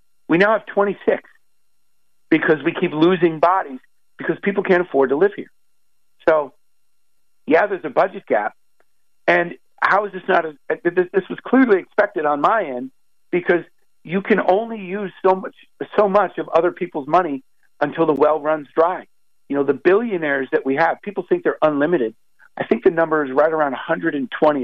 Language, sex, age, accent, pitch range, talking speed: English, male, 50-69, American, 140-190 Hz, 175 wpm